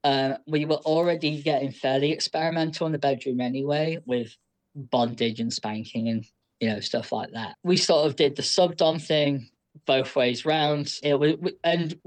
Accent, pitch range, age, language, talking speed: British, 130-155 Hz, 10-29, English, 170 wpm